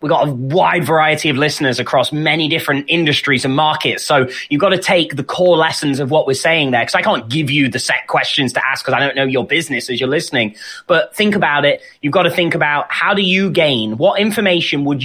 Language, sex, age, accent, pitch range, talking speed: English, male, 20-39, British, 145-195 Hz, 245 wpm